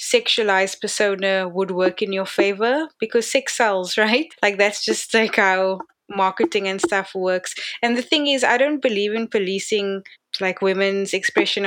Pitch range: 190-225 Hz